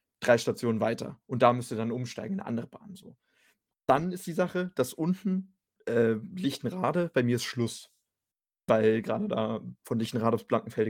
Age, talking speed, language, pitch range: 30-49, 175 wpm, German, 115-145 Hz